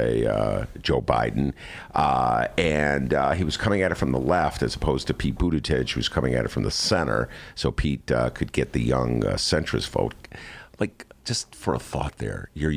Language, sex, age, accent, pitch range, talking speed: English, male, 50-69, American, 75-120 Hz, 205 wpm